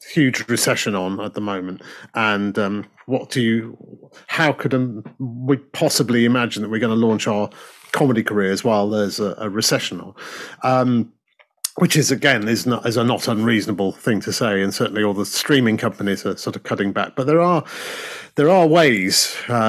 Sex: male